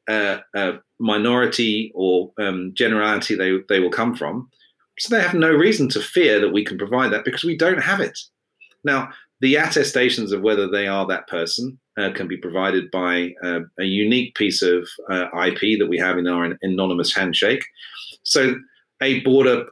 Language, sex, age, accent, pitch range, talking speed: English, male, 30-49, British, 95-130 Hz, 185 wpm